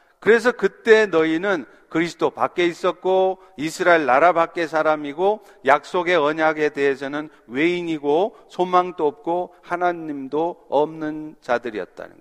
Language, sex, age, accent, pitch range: Korean, male, 50-69, native, 160-220 Hz